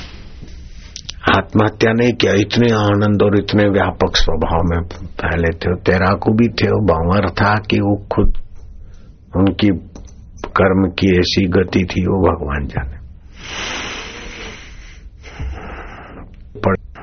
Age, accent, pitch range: 60-79, native, 90-105 Hz